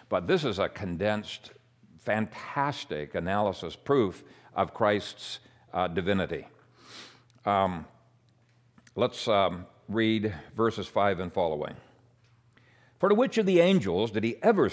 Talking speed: 120 wpm